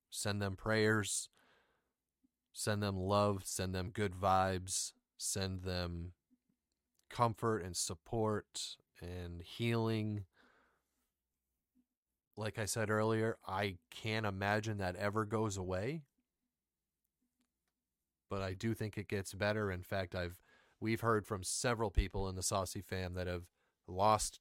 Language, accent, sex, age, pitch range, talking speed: English, American, male, 30-49, 95-115 Hz, 125 wpm